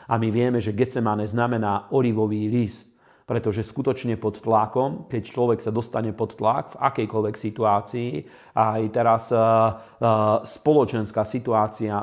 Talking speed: 130 wpm